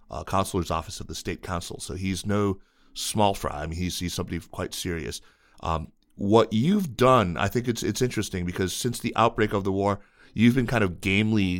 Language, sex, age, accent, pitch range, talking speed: English, male, 30-49, American, 90-100 Hz, 205 wpm